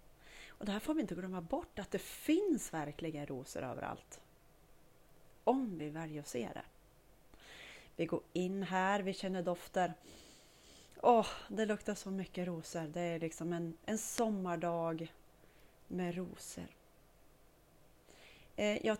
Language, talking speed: Swedish, 135 wpm